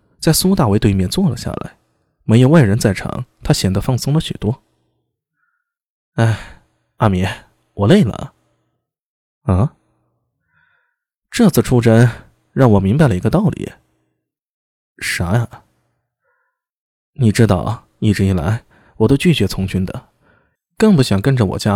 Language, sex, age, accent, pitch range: Chinese, male, 20-39, native, 100-155 Hz